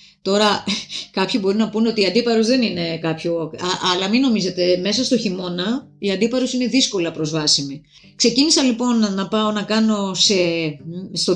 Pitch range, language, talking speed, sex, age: 175-240 Hz, Greek, 160 wpm, female, 30-49